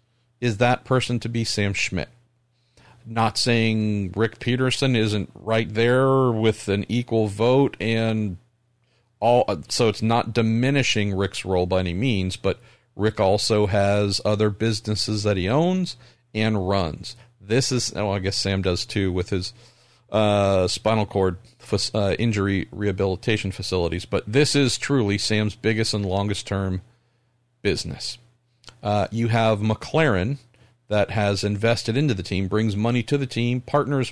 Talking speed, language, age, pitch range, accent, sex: 150 wpm, English, 40-59, 100-125 Hz, American, male